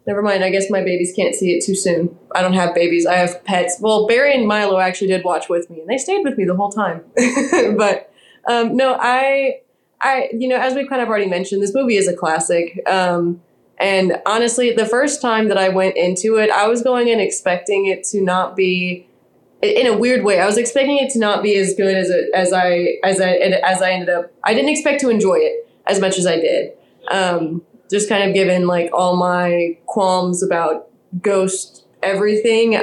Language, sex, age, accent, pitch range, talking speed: English, female, 20-39, American, 180-220 Hz, 220 wpm